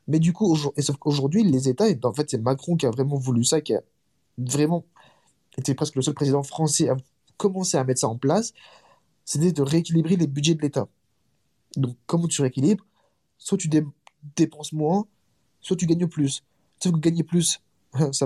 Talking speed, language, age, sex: 185 wpm, French, 20-39, male